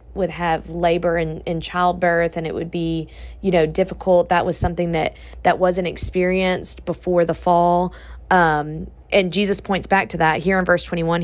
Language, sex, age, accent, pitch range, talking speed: English, female, 20-39, American, 160-185 Hz, 180 wpm